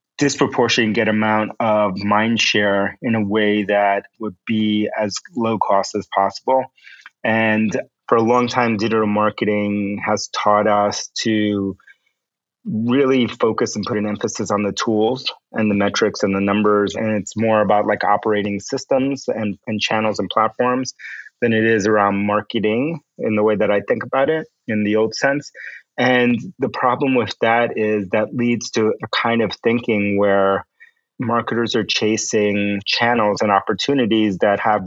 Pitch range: 100-115 Hz